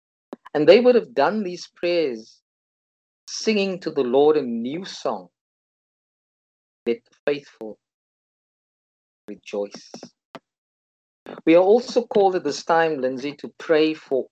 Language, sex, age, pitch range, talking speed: English, male, 50-69, 115-170 Hz, 120 wpm